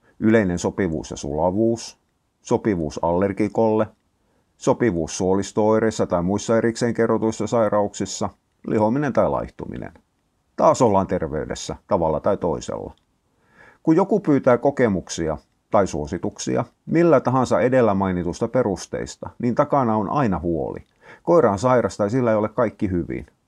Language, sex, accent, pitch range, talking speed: Finnish, male, native, 95-120 Hz, 120 wpm